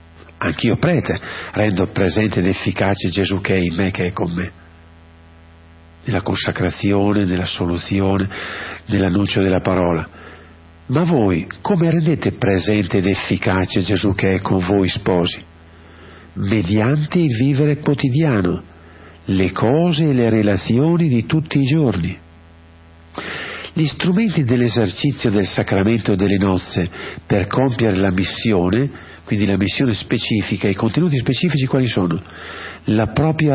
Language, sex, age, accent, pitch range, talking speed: Italian, male, 50-69, native, 90-125 Hz, 125 wpm